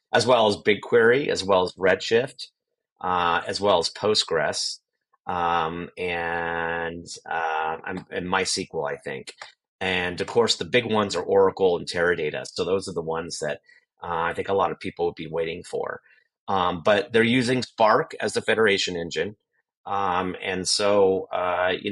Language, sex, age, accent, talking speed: English, male, 30-49, American, 165 wpm